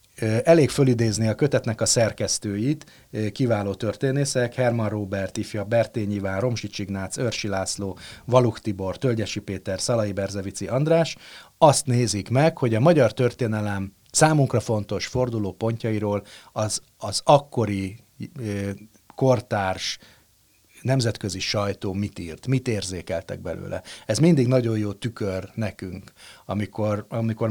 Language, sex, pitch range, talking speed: Hungarian, male, 100-125 Hz, 115 wpm